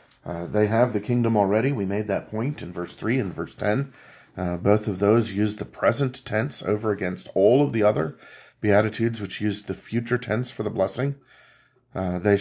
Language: English